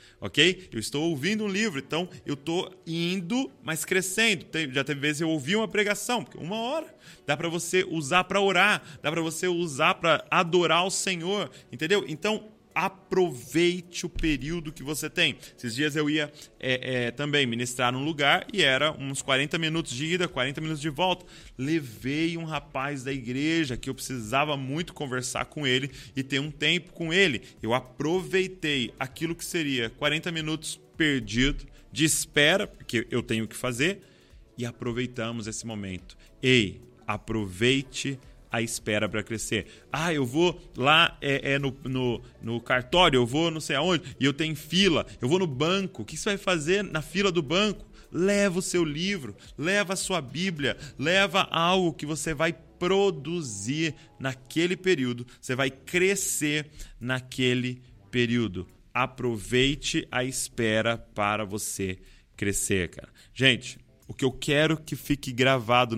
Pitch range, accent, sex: 125-175 Hz, Brazilian, male